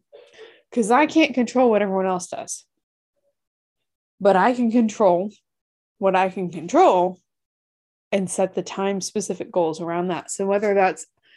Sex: female